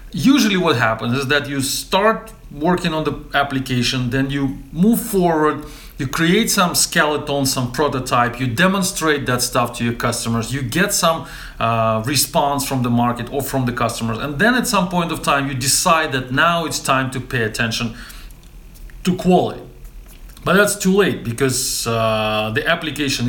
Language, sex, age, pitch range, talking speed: English, male, 40-59, 125-170 Hz, 170 wpm